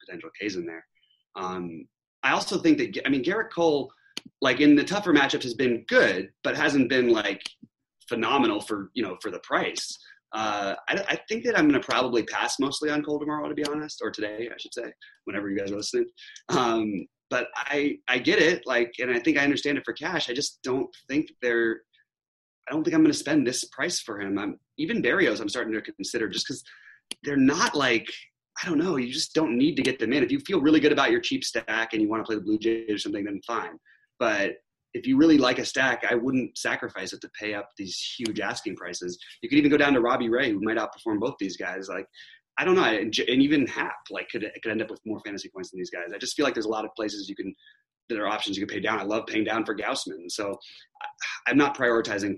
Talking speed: 245 wpm